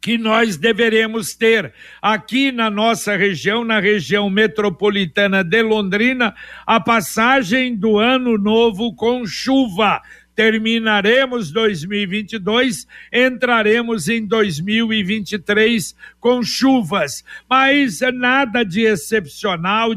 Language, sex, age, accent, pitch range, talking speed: Portuguese, male, 60-79, Brazilian, 200-245 Hz, 95 wpm